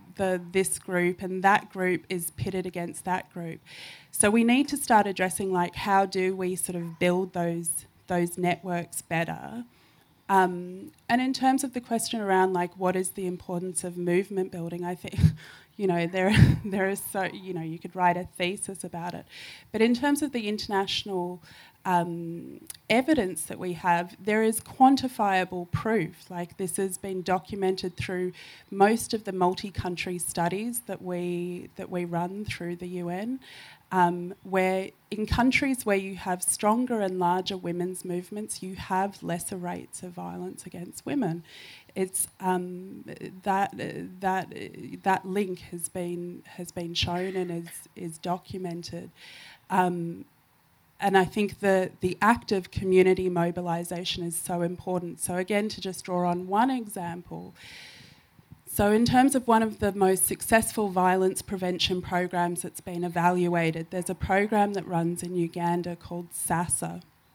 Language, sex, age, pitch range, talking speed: English, female, 20-39, 175-200 Hz, 160 wpm